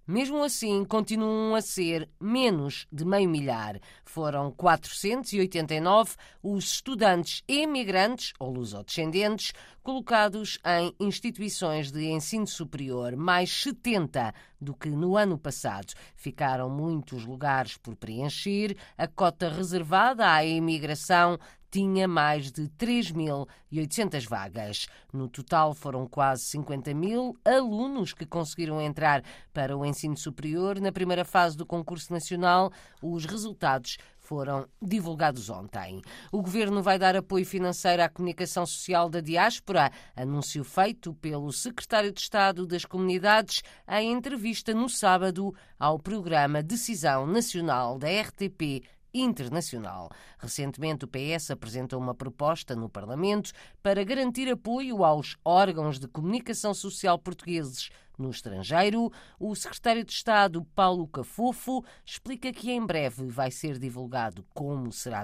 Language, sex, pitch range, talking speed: Portuguese, female, 145-205 Hz, 125 wpm